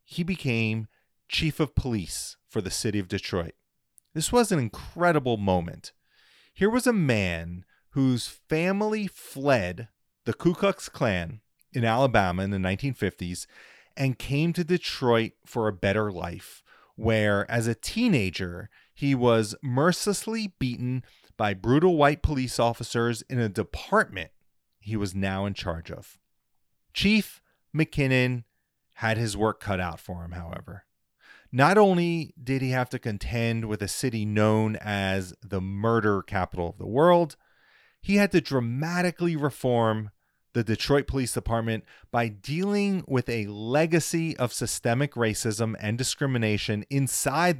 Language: English